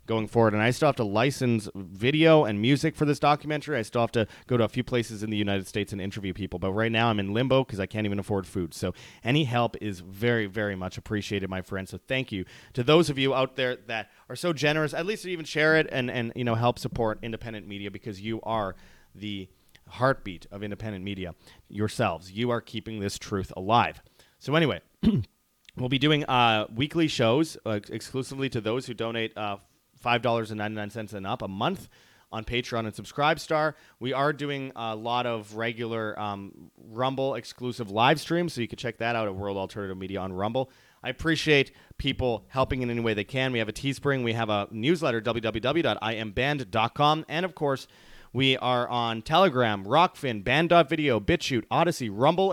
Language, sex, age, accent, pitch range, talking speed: English, male, 30-49, American, 105-135 Hz, 195 wpm